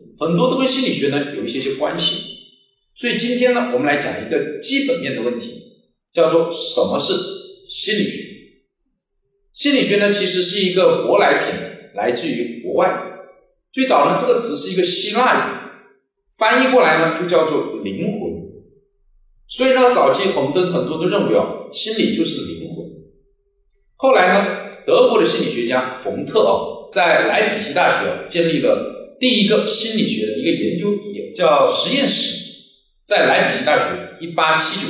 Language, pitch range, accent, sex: Chinese, 170-265 Hz, native, male